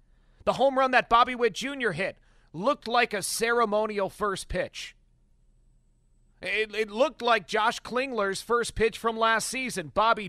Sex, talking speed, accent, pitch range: male, 150 wpm, American, 190-230 Hz